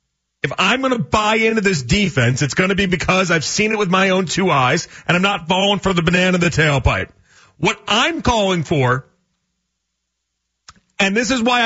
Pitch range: 140-205 Hz